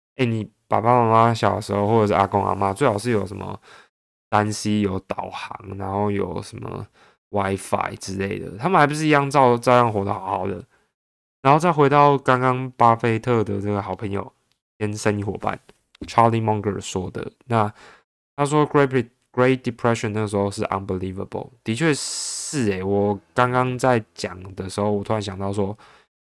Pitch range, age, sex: 100-115 Hz, 20-39, male